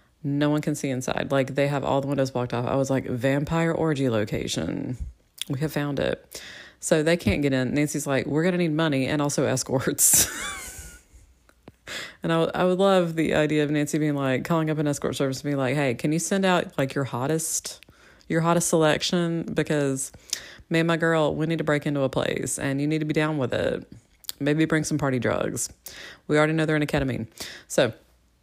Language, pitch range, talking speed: English, 135-165 Hz, 215 wpm